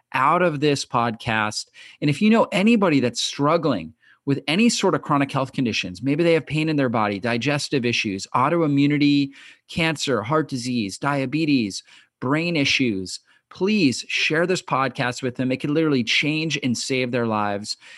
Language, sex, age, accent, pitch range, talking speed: English, male, 30-49, American, 120-155 Hz, 160 wpm